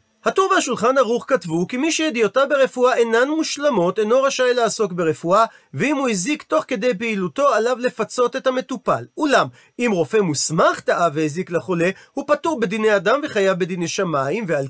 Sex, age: male, 40-59